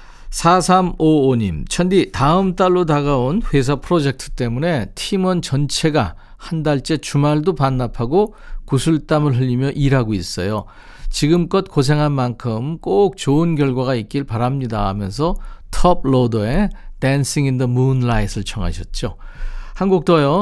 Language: Korean